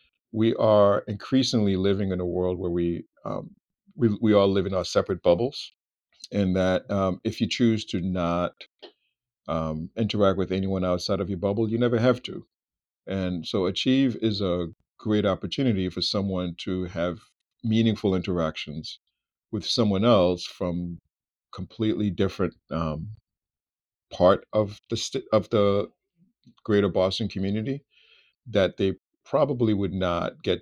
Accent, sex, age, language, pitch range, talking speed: American, male, 50-69, English, 90-105 Hz, 140 wpm